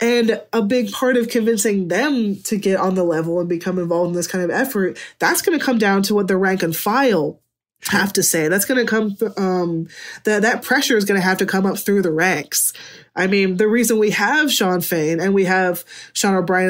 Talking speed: 235 wpm